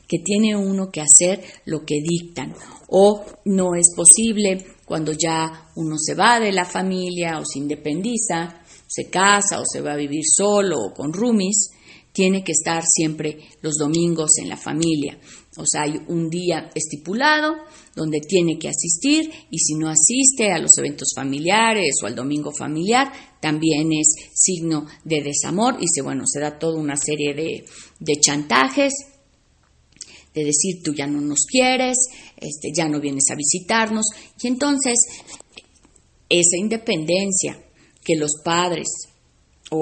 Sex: female